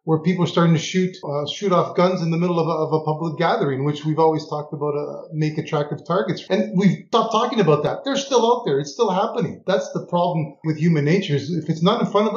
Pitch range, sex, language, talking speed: 150-185 Hz, male, English, 260 wpm